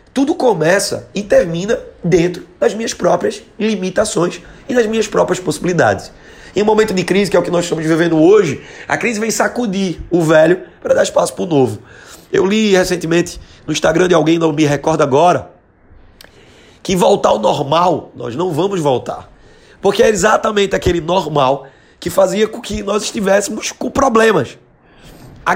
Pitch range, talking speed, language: 140-190 Hz, 170 wpm, Portuguese